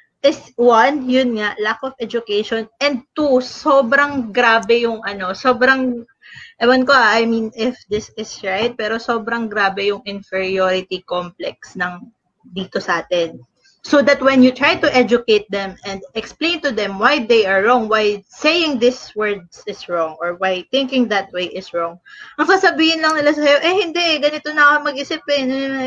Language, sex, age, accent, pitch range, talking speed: English, female, 20-39, Filipino, 210-295 Hz, 165 wpm